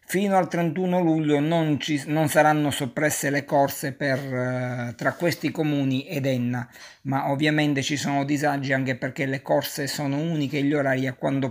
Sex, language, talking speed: male, Italian, 175 wpm